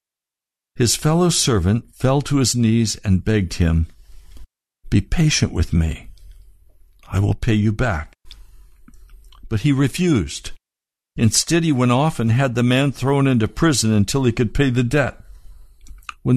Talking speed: 145 wpm